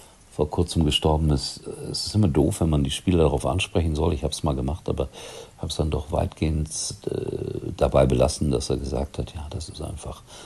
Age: 50-69